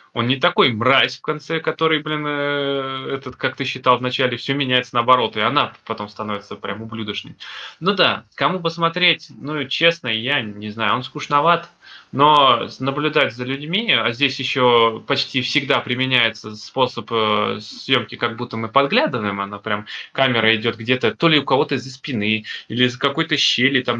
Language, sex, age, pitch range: Russian, male, 20-39, 110-140 Hz